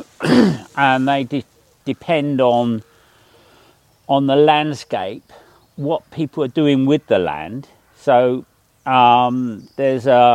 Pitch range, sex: 110-135 Hz, male